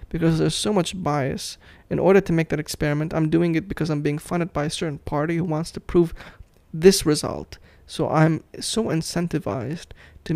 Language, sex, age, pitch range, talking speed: English, male, 20-39, 150-170 Hz, 190 wpm